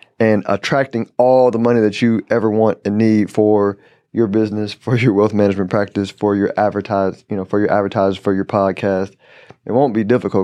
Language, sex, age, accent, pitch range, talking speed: English, male, 20-39, American, 100-125 Hz, 195 wpm